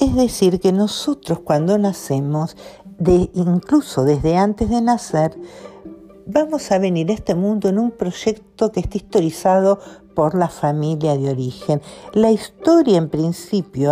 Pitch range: 155-210 Hz